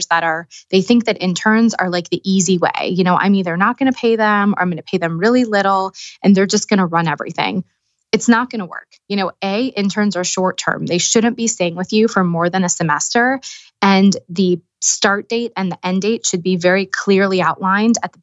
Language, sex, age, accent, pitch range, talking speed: English, female, 20-39, American, 180-210 Hz, 240 wpm